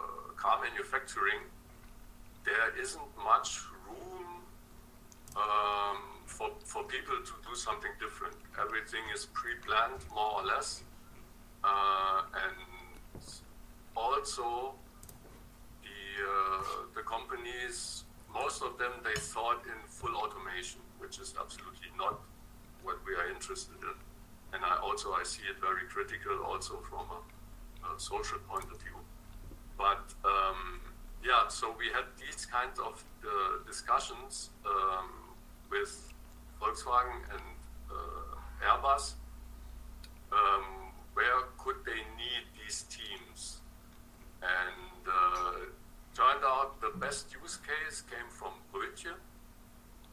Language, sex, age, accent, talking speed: English, male, 50-69, German, 115 wpm